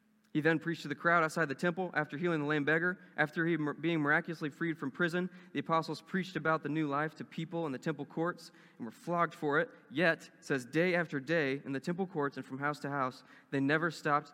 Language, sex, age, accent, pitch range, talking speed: English, male, 20-39, American, 130-175 Hz, 240 wpm